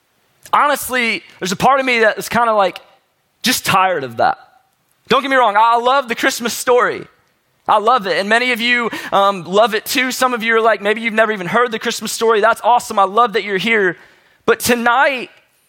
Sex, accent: male, American